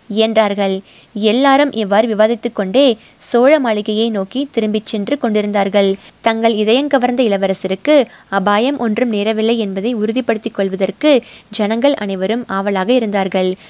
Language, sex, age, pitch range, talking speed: Tamil, female, 20-39, 205-245 Hz, 105 wpm